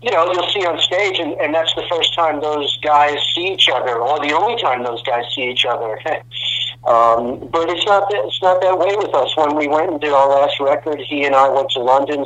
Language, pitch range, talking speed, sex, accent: English, 125-150 Hz, 250 wpm, male, American